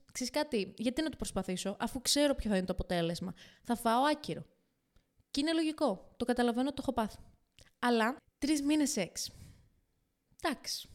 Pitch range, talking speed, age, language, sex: 195-255 Hz, 165 wpm, 20-39, Greek, female